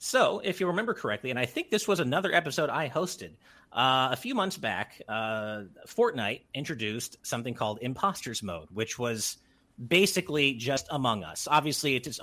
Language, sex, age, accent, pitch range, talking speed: English, male, 40-59, American, 105-160 Hz, 170 wpm